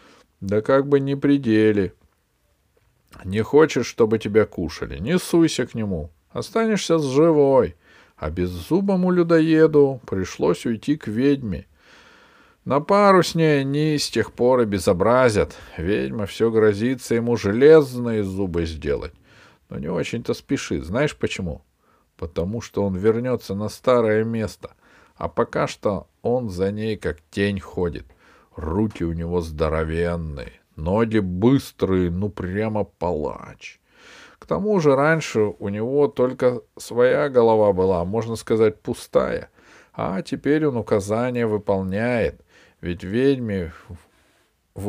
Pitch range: 90-135 Hz